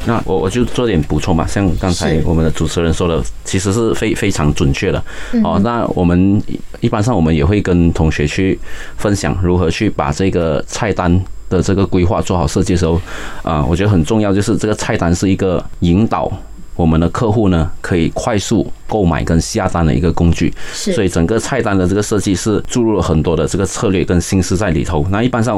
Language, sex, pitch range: Chinese, male, 80-100 Hz